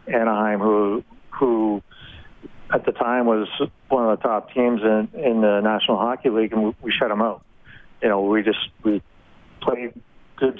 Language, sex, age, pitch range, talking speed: English, male, 40-59, 105-115 Hz, 175 wpm